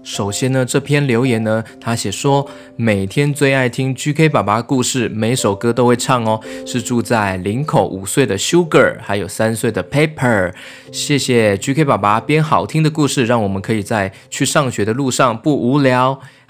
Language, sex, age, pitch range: Chinese, male, 20-39, 110-145 Hz